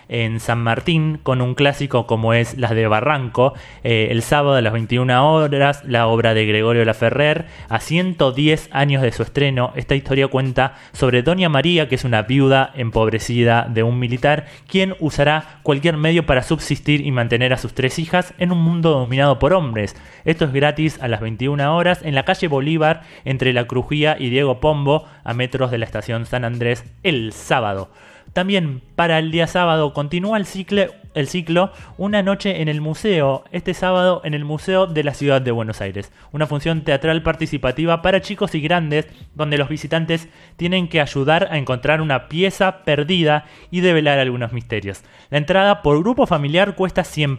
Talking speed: 180 wpm